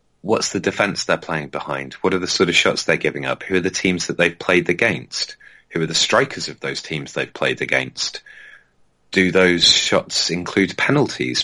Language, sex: English, male